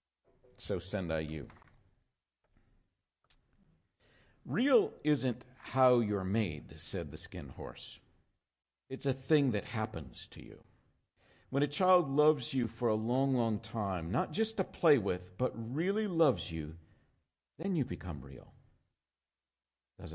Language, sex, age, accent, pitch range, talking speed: English, male, 50-69, American, 90-130 Hz, 130 wpm